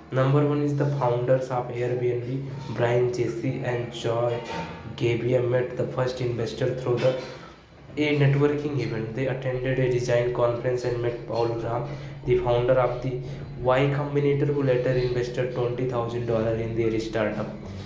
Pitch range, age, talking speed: 120-135 Hz, 20-39, 145 wpm